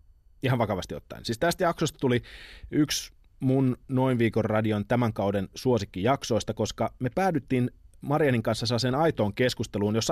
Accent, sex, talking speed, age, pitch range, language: native, male, 150 wpm, 30-49, 105-145 Hz, Finnish